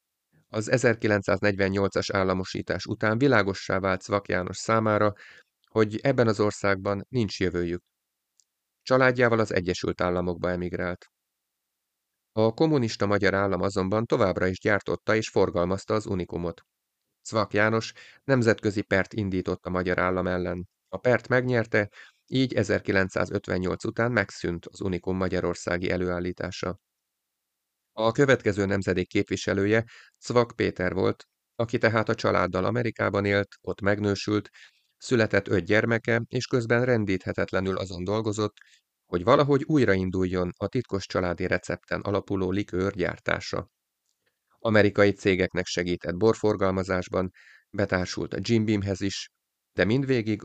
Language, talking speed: Hungarian, 115 wpm